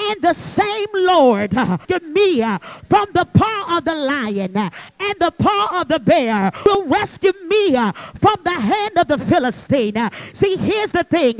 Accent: American